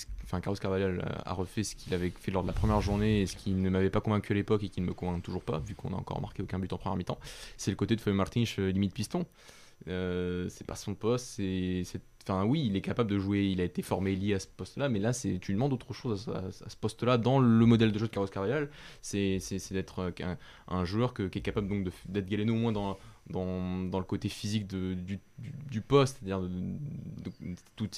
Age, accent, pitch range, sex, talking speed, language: 20-39, French, 95-110 Hz, male, 265 wpm, French